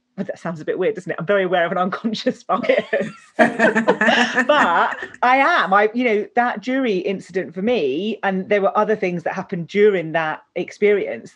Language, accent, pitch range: English, British, 185-230 Hz